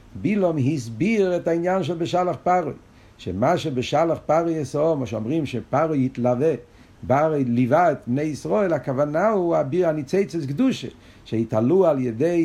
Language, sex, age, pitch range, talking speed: Hebrew, male, 50-69, 120-160 Hz, 130 wpm